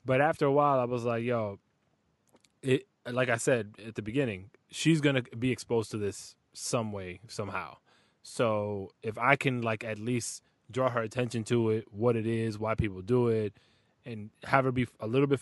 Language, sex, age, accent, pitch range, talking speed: English, male, 20-39, American, 110-135 Hz, 195 wpm